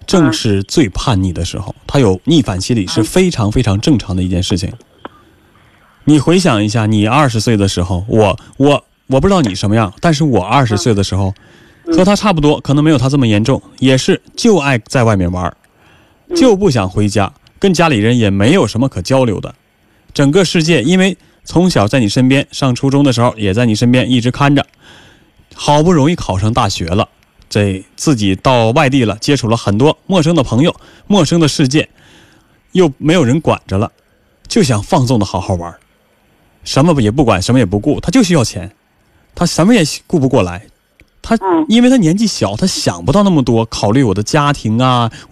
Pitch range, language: 105-155 Hz, Chinese